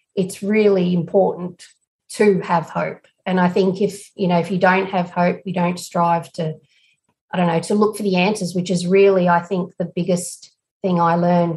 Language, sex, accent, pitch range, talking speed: English, female, Australian, 175-195 Hz, 200 wpm